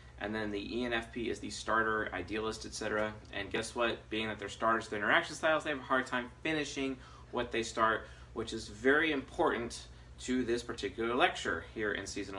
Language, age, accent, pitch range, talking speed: English, 30-49, American, 105-140 Hz, 190 wpm